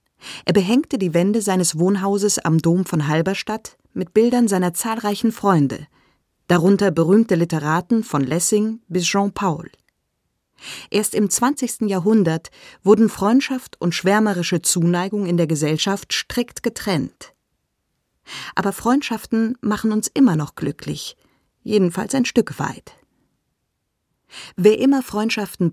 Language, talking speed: German, 115 wpm